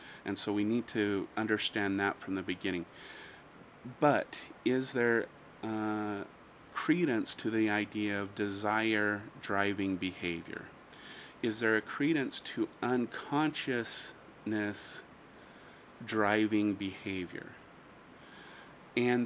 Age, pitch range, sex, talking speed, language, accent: 30-49, 100-115 Hz, male, 95 wpm, English, American